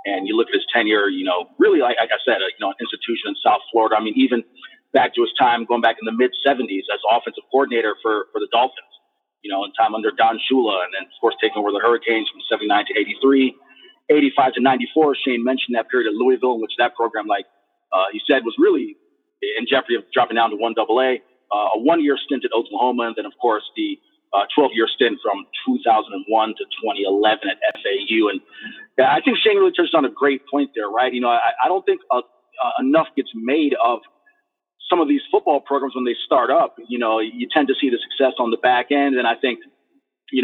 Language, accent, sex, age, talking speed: English, American, male, 30-49, 235 wpm